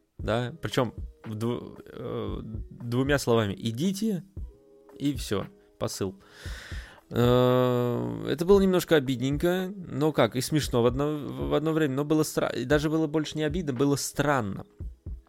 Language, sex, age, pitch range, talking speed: Russian, male, 20-39, 110-155 Hz, 120 wpm